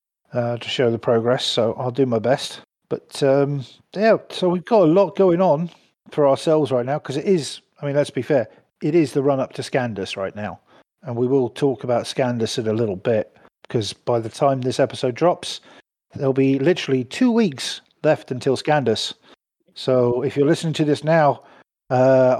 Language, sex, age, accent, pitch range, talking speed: English, male, 50-69, British, 120-155 Hz, 190 wpm